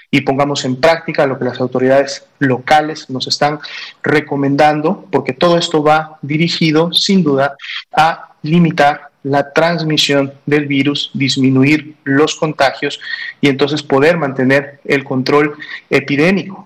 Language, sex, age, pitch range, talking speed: Spanish, male, 40-59, 140-160 Hz, 125 wpm